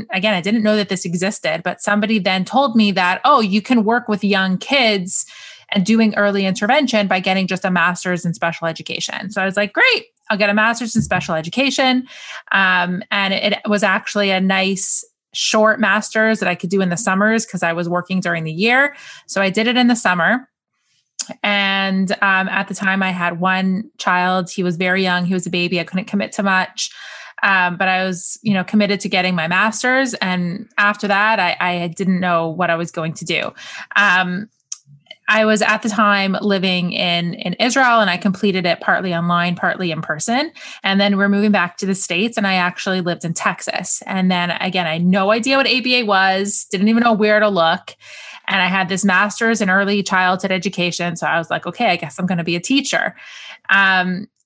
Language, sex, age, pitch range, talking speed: English, female, 20-39, 180-215 Hz, 215 wpm